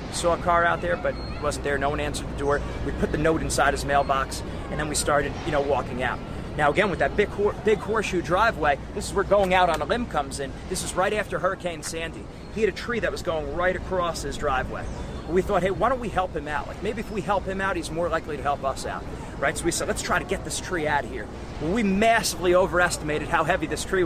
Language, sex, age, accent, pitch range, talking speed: English, male, 30-49, American, 155-210 Hz, 270 wpm